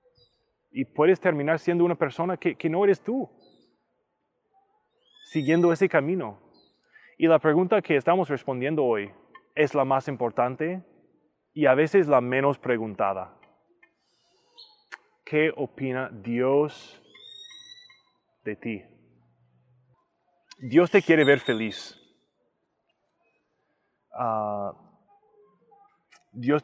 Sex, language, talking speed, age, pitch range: male, English, 95 wpm, 20-39, 135-185 Hz